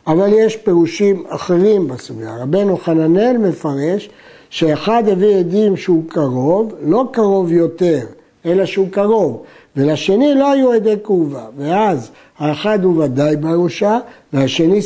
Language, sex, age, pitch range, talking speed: Hebrew, male, 60-79, 160-220 Hz, 120 wpm